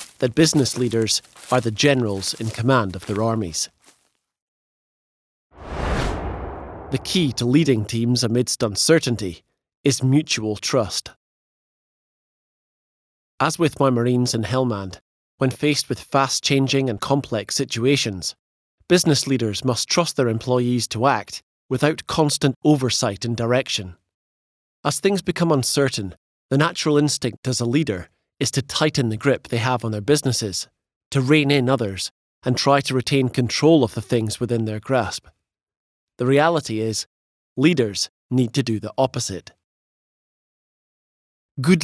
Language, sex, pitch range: English, male, 105-140 Hz